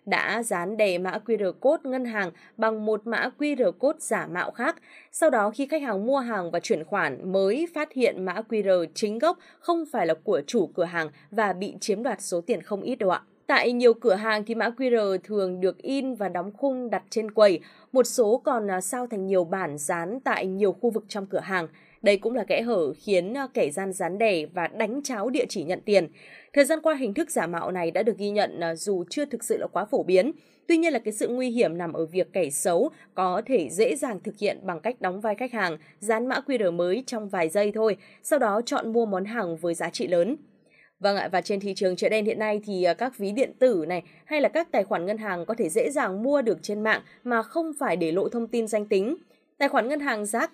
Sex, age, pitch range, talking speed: female, 20-39, 185-250 Hz, 245 wpm